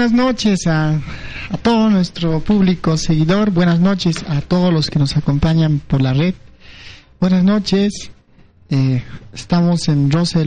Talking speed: 150 wpm